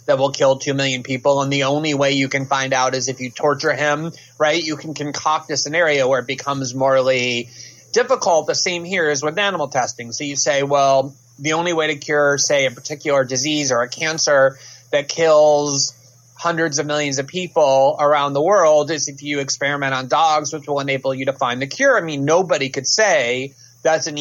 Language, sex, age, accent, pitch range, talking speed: English, male, 30-49, American, 125-150 Hz, 210 wpm